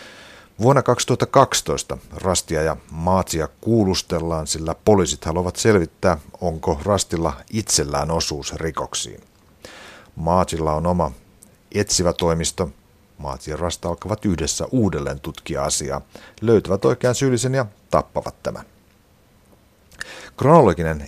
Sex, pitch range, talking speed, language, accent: male, 80-100 Hz, 100 wpm, Finnish, native